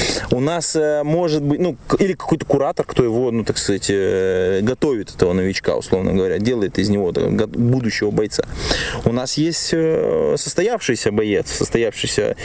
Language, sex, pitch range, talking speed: Russian, male, 110-150 Hz, 145 wpm